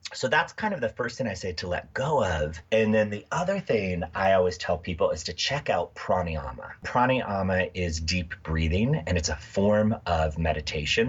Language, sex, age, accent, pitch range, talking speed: English, male, 30-49, American, 80-110 Hz, 200 wpm